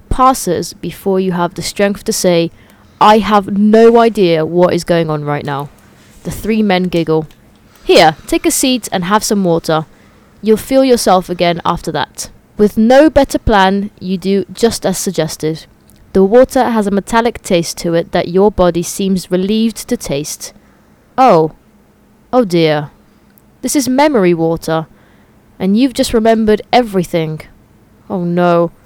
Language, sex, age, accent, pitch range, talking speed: English, female, 20-39, British, 165-225 Hz, 155 wpm